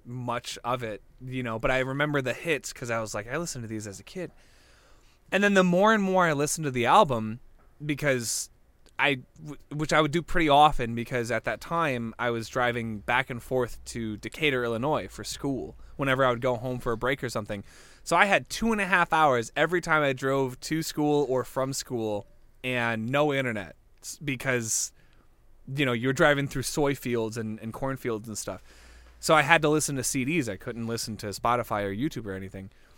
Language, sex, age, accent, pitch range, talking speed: English, male, 20-39, American, 115-145 Hz, 205 wpm